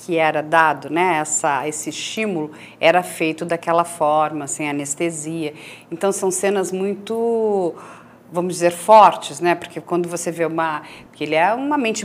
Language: Portuguese